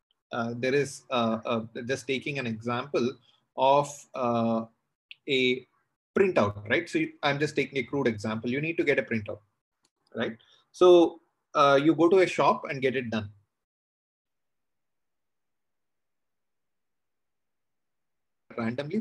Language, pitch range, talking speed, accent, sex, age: English, 120-170 Hz, 125 wpm, Indian, male, 30-49